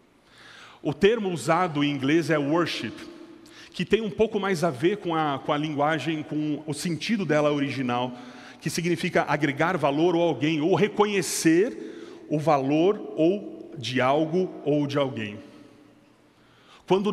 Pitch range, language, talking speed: 145-190 Hz, Portuguese, 135 wpm